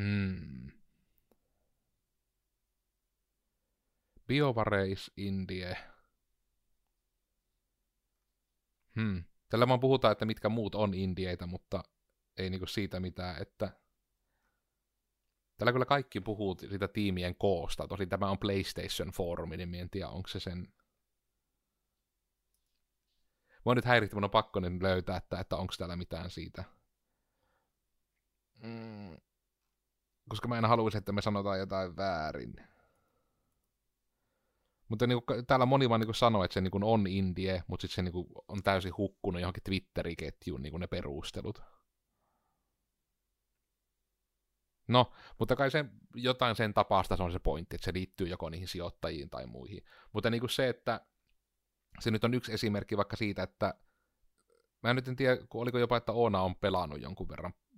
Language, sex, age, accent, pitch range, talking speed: Finnish, male, 30-49, native, 90-110 Hz, 130 wpm